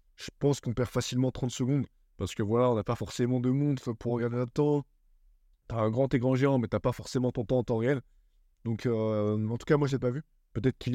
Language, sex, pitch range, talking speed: French, male, 105-125 Hz, 260 wpm